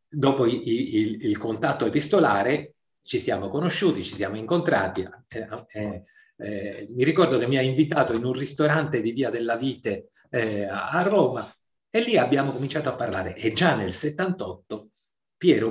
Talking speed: 155 wpm